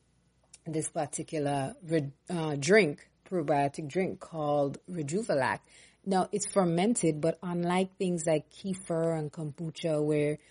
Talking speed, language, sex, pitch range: 115 wpm, English, female, 155-185 Hz